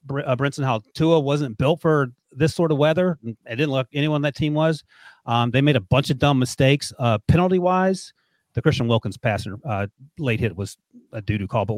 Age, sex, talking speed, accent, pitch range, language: 30-49, male, 215 wpm, American, 120-150 Hz, English